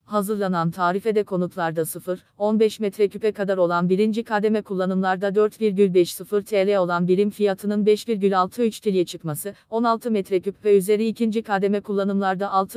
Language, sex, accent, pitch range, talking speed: Turkish, female, native, 185-215 Hz, 120 wpm